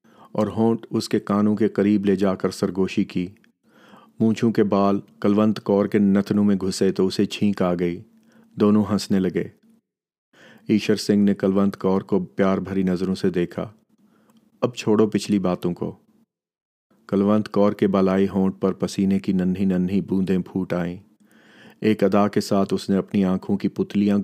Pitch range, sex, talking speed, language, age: 95-110 Hz, male, 170 wpm, Urdu, 40-59